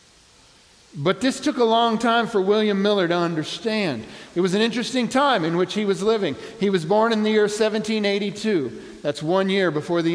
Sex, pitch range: male, 170-220 Hz